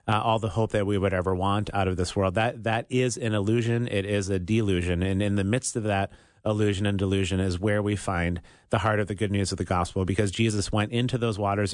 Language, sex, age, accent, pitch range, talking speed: English, male, 30-49, American, 95-110 Hz, 255 wpm